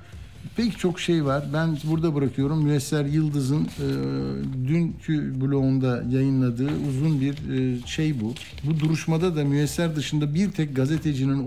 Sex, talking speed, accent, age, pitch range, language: male, 135 wpm, native, 50-69, 120-145 Hz, Turkish